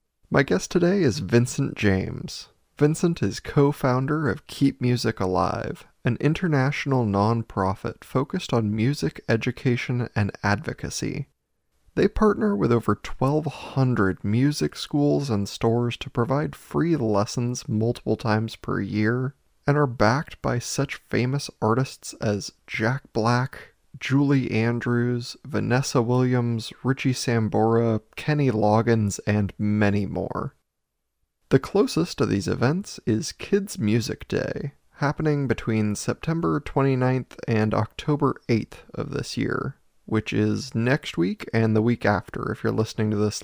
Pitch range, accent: 110-140 Hz, American